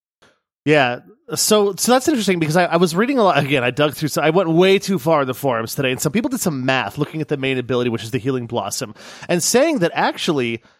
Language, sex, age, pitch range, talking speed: English, male, 30-49, 130-185 Hz, 255 wpm